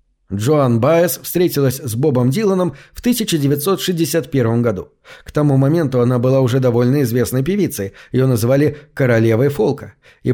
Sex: male